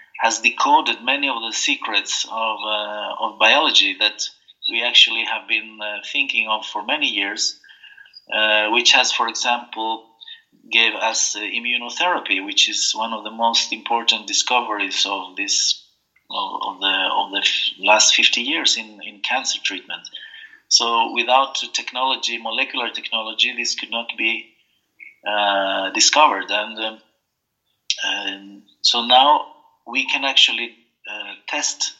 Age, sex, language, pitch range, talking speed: 30-49, male, English, 110-155 Hz, 135 wpm